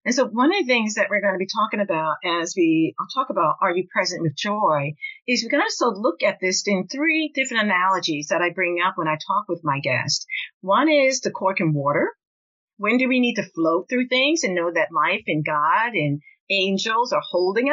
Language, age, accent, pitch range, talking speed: English, 50-69, American, 185-285 Hz, 225 wpm